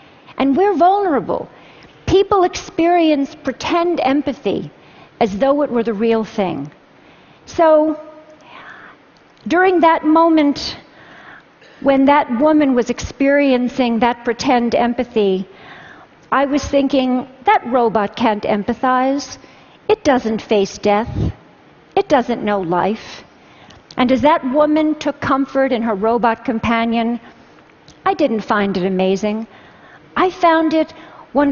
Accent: American